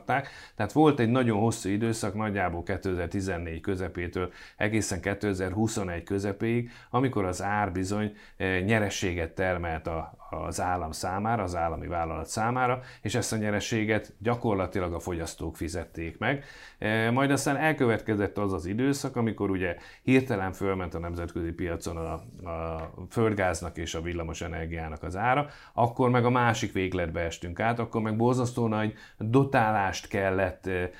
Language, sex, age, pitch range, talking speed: English, male, 30-49, 85-110 Hz, 135 wpm